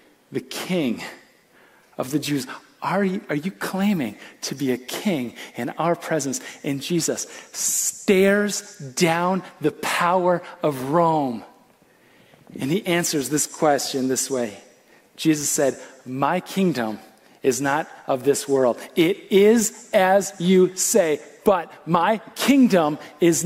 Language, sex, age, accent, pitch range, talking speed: English, male, 40-59, American, 165-240 Hz, 125 wpm